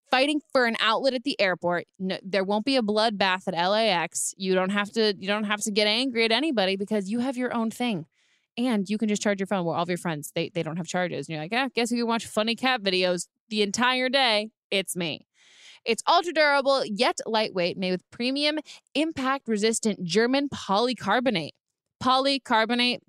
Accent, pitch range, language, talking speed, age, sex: American, 185-255 Hz, English, 210 wpm, 20-39, female